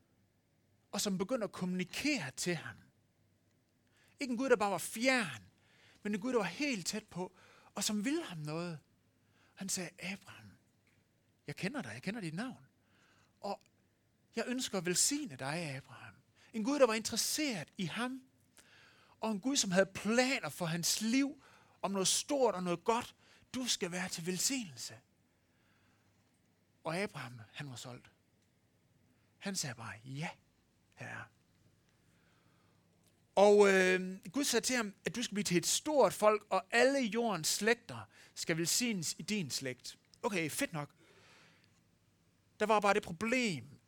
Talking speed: 155 wpm